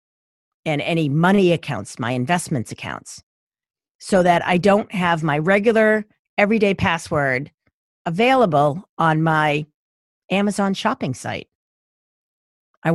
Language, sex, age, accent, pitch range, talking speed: English, female, 40-59, American, 165-230 Hz, 105 wpm